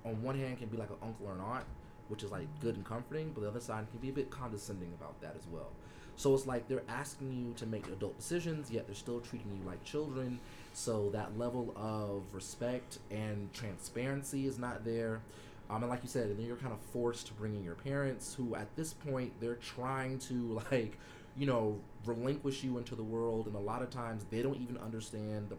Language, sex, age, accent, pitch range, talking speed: English, male, 30-49, American, 100-125 Hz, 230 wpm